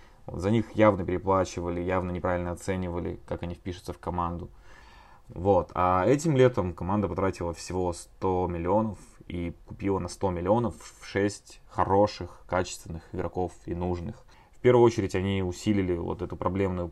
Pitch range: 90-105 Hz